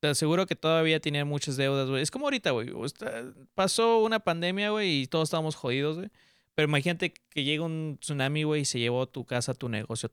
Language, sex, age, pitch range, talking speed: Spanish, male, 20-39, 125-155 Hz, 205 wpm